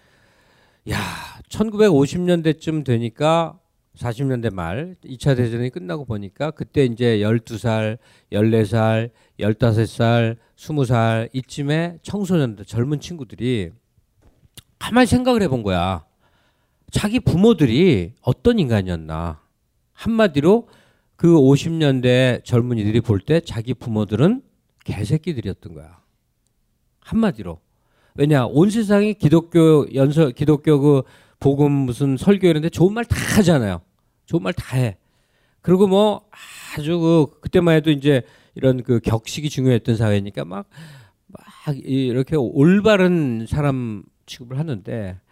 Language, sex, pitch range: Korean, male, 115-170 Hz